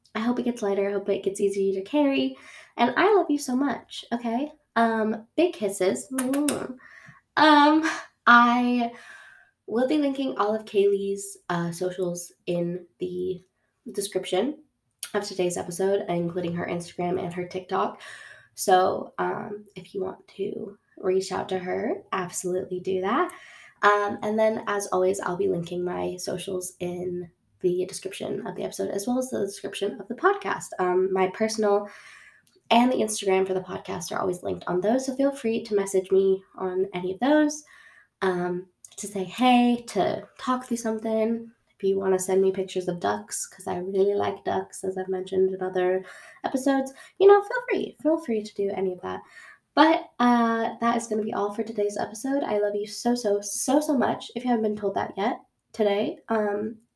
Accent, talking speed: American, 180 wpm